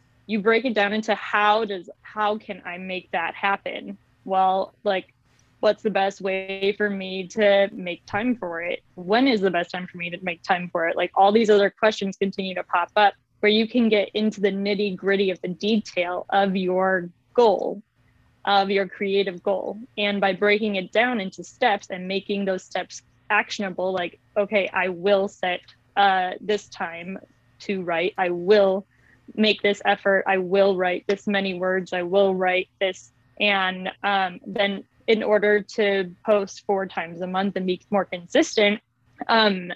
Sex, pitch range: female, 180-205 Hz